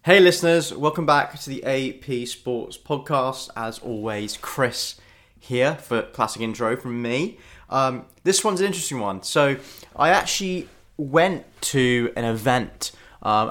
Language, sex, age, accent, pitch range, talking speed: English, male, 20-39, British, 110-130 Hz, 140 wpm